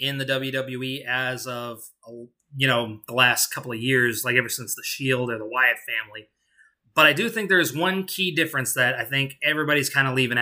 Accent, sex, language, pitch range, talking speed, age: American, male, English, 125-145 Hz, 205 wpm, 20-39